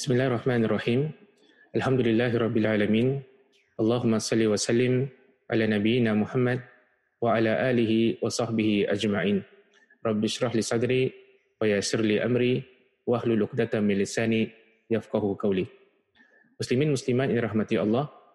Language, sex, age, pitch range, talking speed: Malay, male, 20-39, 110-130 Hz, 110 wpm